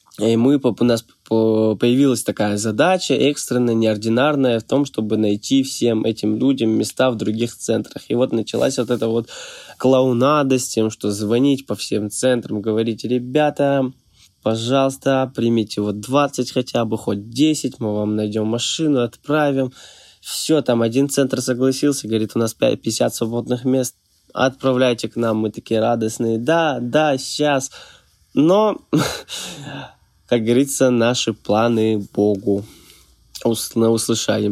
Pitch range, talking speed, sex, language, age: 110-135 Hz, 130 wpm, male, Russian, 20-39